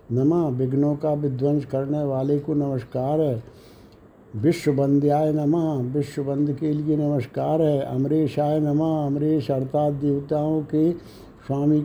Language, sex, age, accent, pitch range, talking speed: Hindi, male, 60-79, native, 140-155 Hz, 130 wpm